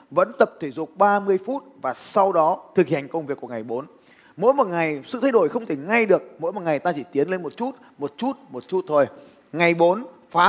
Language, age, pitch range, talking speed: Vietnamese, 20-39, 155-210 Hz, 245 wpm